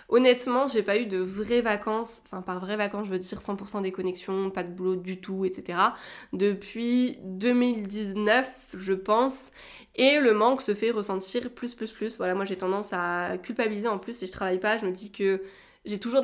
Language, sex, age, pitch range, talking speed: French, female, 20-39, 195-245 Hz, 200 wpm